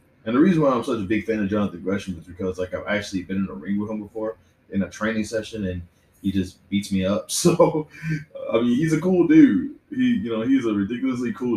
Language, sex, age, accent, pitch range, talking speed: English, male, 20-39, American, 90-115 Hz, 250 wpm